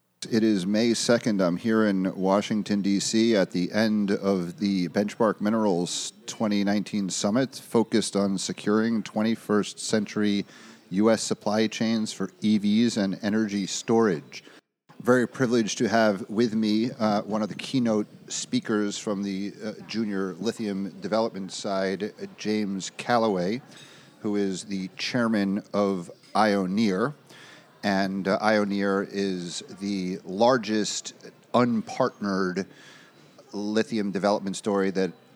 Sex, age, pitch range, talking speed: male, 40-59, 95-110 Hz, 115 wpm